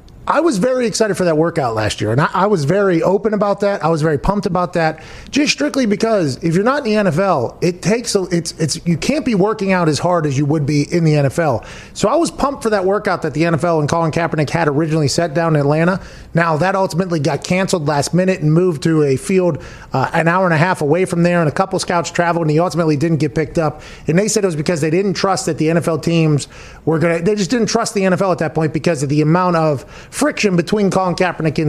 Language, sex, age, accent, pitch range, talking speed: English, male, 30-49, American, 160-190 Hz, 260 wpm